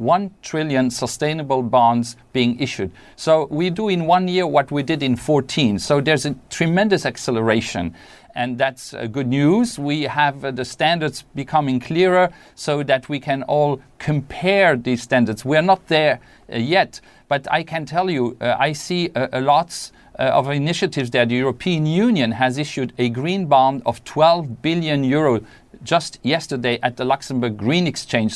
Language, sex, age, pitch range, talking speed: English, male, 40-59, 130-170 Hz, 170 wpm